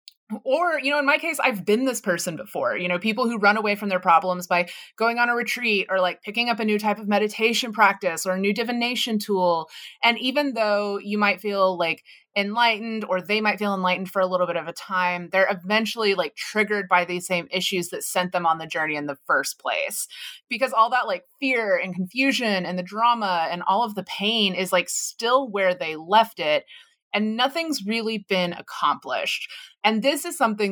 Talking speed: 215 wpm